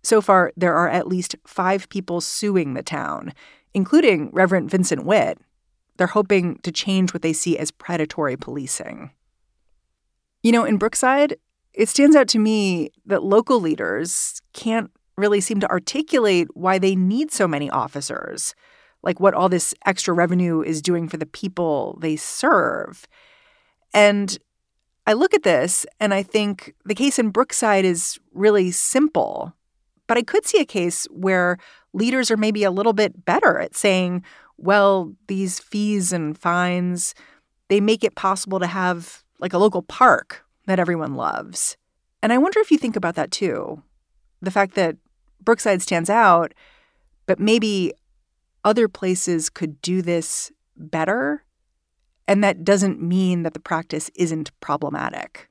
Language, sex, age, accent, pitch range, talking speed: English, female, 40-59, American, 170-215 Hz, 155 wpm